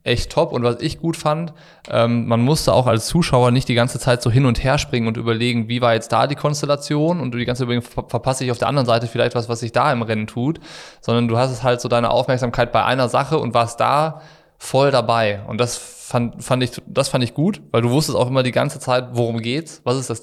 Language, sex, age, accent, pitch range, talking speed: German, male, 20-39, German, 115-135 Hz, 260 wpm